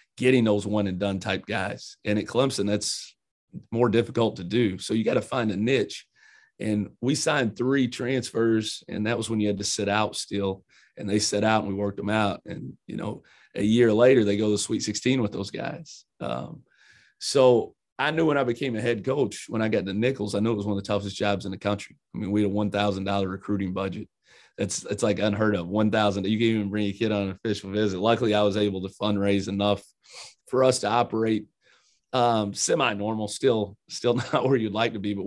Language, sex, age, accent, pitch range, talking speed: English, male, 30-49, American, 100-120 Hz, 225 wpm